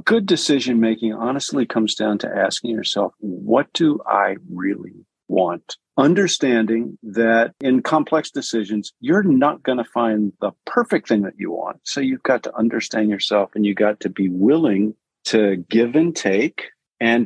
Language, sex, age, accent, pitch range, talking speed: English, male, 50-69, American, 105-130 Hz, 165 wpm